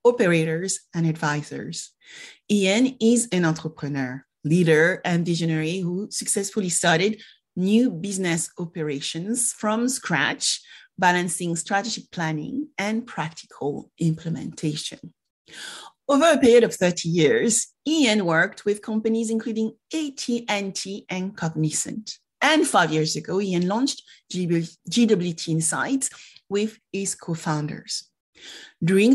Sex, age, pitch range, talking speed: female, 30-49, 165-220 Hz, 105 wpm